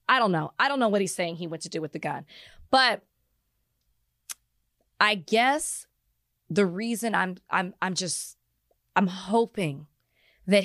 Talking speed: 160 wpm